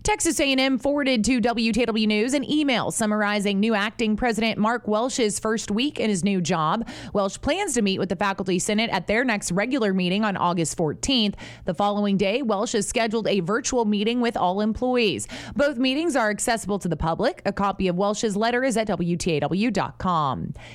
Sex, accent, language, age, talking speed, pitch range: female, American, English, 20-39, 180 wpm, 190-240 Hz